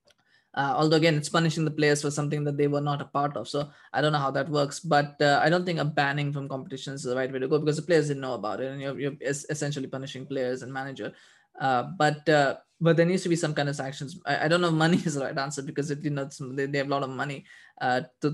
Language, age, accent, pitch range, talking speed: English, 20-39, Indian, 140-155 Hz, 290 wpm